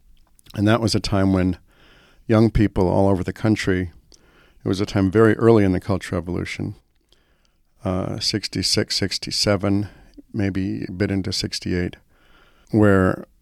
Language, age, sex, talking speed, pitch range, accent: English, 50-69, male, 140 wpm, 95-110 Hz, American